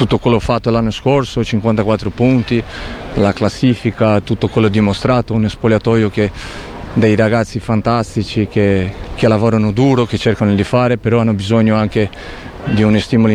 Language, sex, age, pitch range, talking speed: Italian, male, 40-59, 100-120 Hz, 150 wpm